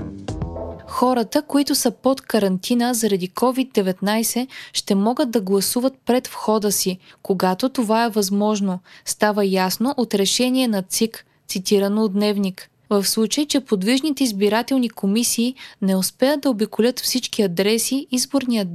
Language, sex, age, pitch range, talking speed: Bulgarian, female, 20-39, 200-250 Hz, 130 wpm